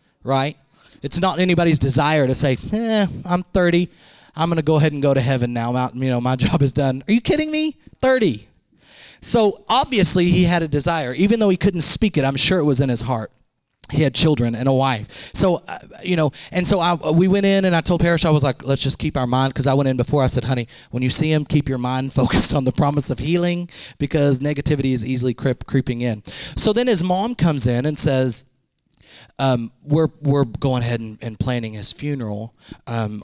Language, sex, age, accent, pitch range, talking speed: English, male, 30-49, American, 125-175 Hz, 225 wpm